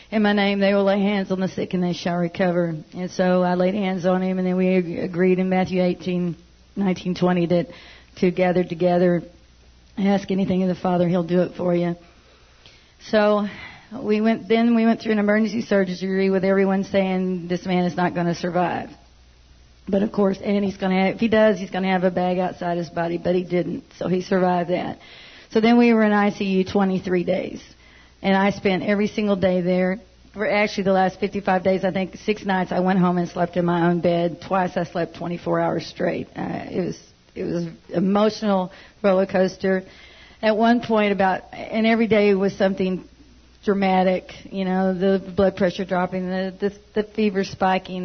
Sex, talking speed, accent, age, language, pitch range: female, 200 wpm, American, 40-59, English, 180-200 Hz